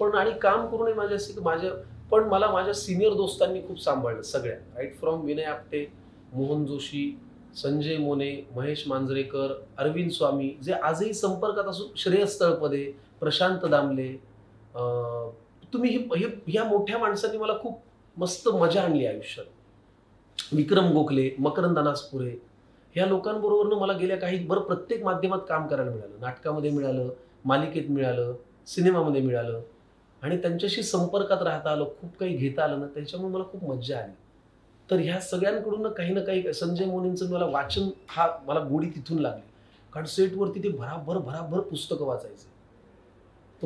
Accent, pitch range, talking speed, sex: native, 135-195 Hz, 145 wpm, male